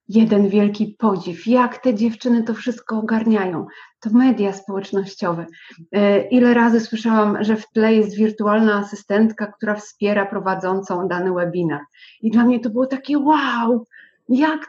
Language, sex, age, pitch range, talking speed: Polish, female, 30-49, 210-275 Hz, 140 wpm